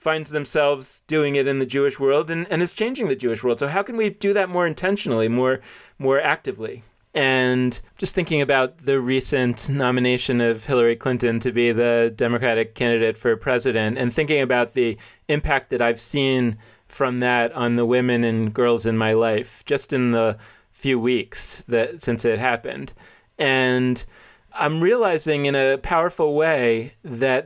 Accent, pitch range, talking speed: American, 120-155 Hz, 170 wpm